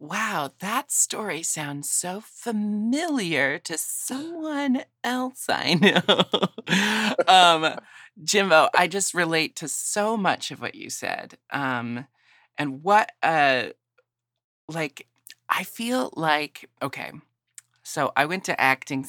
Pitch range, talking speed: 130-205 Hz, 115 wpm